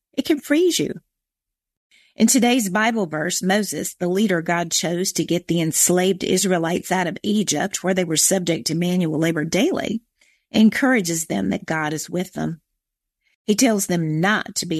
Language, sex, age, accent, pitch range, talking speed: English, female, 50-69, American, 175-220 Hz, 170 wpm